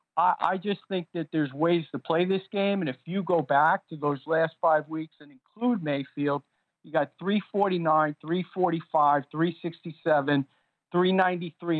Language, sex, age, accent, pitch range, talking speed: English, male, 50-69, American, 145-175 Hz, 145 wpm